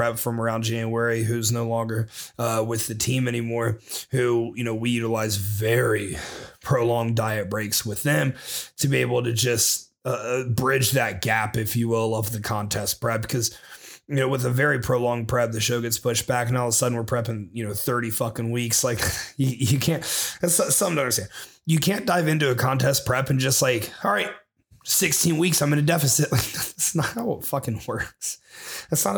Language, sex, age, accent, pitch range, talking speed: English, male, 30-49, American, 115-130 Hz, 205 wpm